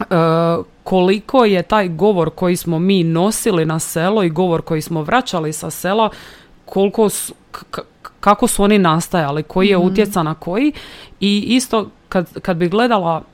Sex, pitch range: female, 175-230 Hz